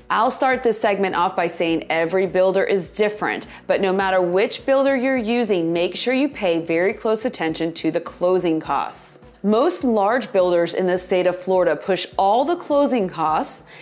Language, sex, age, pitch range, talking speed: English, female, 30-49, 175-245 Hz, 180 wpm